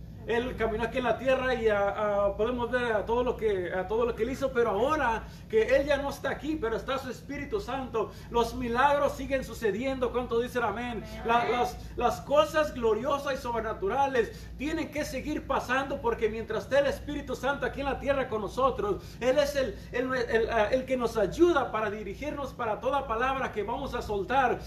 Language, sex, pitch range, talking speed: Spanish, male, 225-275 Hz, 205 wpm